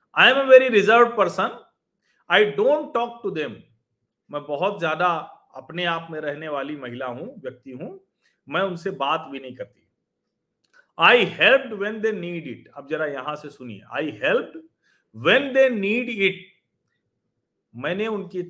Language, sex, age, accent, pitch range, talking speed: Hindi, male, 40-59, native, 150-210 Hz, 95 wpm